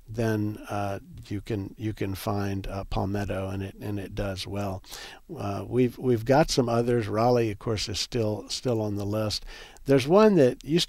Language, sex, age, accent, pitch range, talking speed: English, male, 60-79, American, 100-130 Hz, 185 wpm